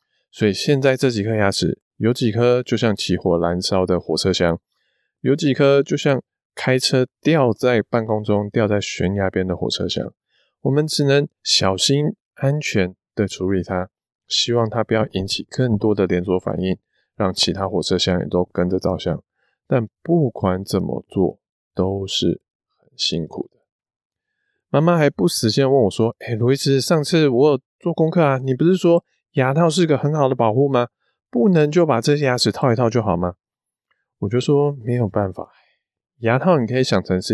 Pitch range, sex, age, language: 95-135 Hz, male, 20-39, Chinese